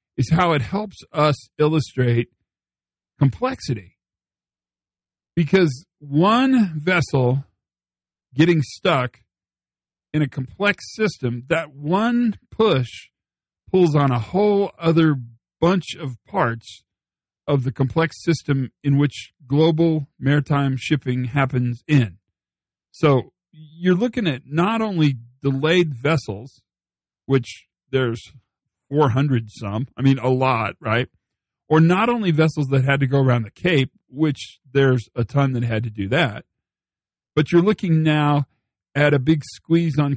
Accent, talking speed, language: American, 125 wpm, English